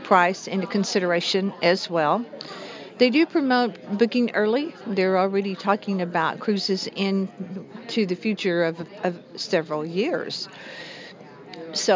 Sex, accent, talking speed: female, American, 115 wpm